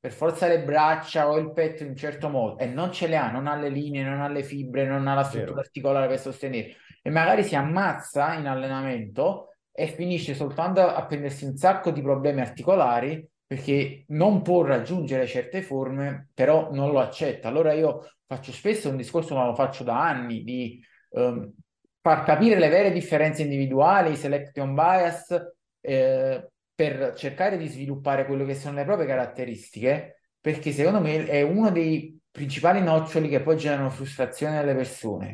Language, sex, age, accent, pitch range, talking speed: Italian, male, 20-39, native, 135-160 Hz, 175 wpm